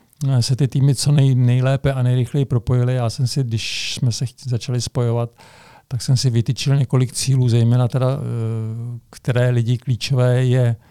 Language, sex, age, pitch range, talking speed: Czech, male, 50-69, 120-130 Hz, 155 wpm